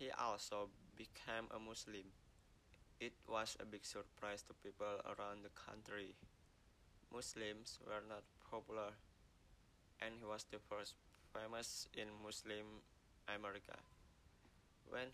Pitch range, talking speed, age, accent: 100-110 Hz, 115 wpm, 20-39, Indonesian